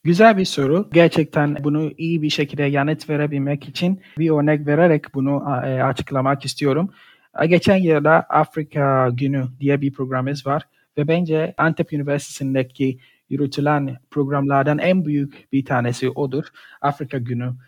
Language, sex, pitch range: Turkish, male, 135-160 Hz